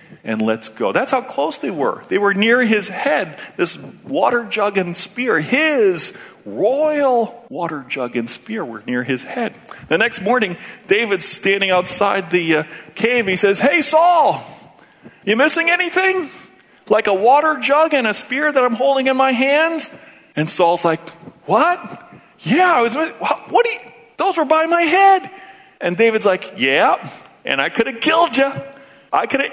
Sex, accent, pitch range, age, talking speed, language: male, American, 165-270 Hz, 40-59, 170 wpm, English